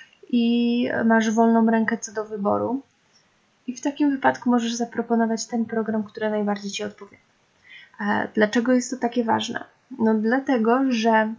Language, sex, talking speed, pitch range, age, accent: Polish, female, 140 wpm, 215-245 Hz, 20-39, native